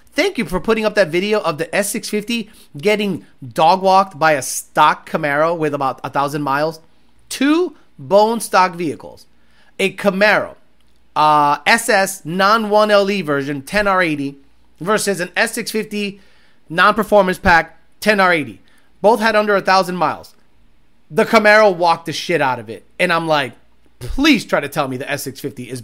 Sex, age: male, 30-49